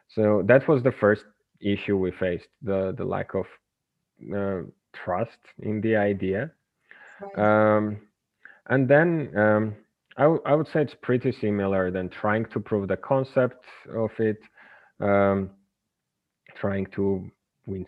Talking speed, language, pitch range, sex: 135 wpm, English, 95-110 Hz, male